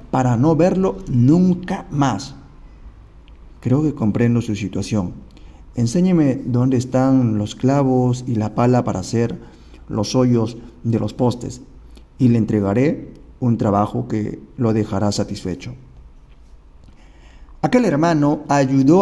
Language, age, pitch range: Spanish, 40-59, 110-155 Hz